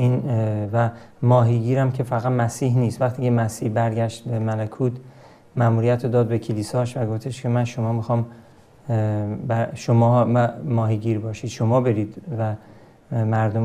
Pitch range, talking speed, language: 115-135 Hz, 130 wpm, Persian